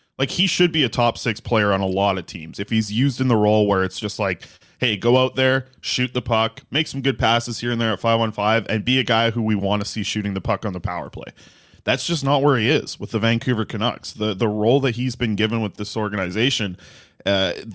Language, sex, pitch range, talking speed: English, male, 105-125 Hz, 255 wpm